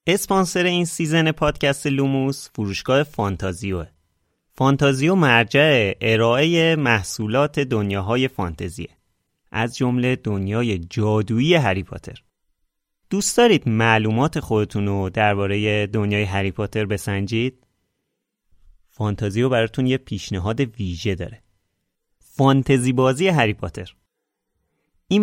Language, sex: Persian, male